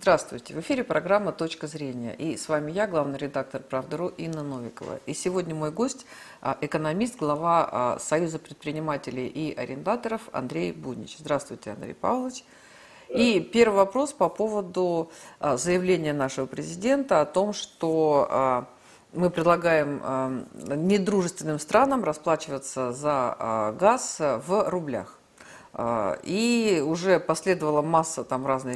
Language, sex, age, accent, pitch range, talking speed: Russian, female, 50-69, native, 140-190 Hz, 115 wpm